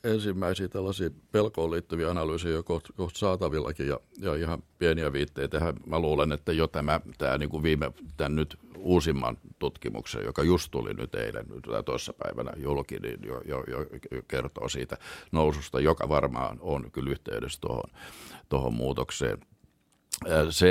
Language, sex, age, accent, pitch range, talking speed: Finnish, male, 50-69, native, 75-90 Hz, 150 wpm